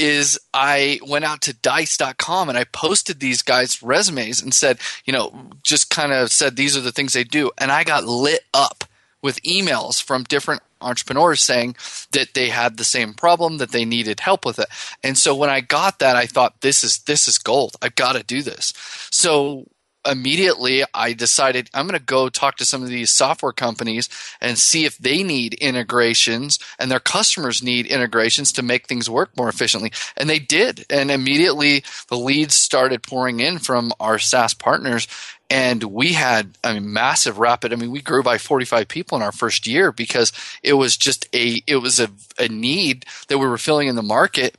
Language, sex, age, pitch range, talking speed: English, male, 30-49, 120-140 Hz, 195 wpm